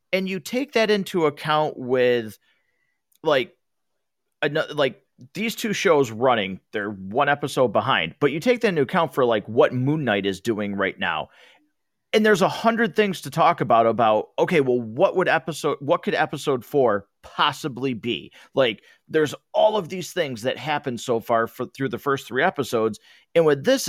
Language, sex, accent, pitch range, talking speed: English, male, American, 125-195 Hz, 180 wpm